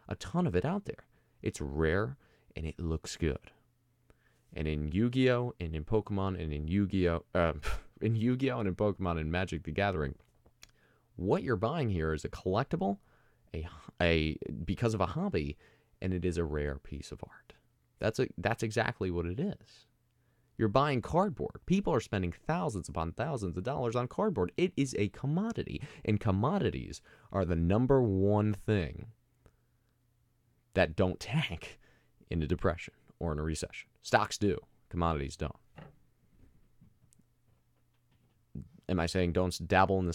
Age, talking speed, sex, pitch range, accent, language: 20-39, 155 wpm, male, 80-115 Hz, American, English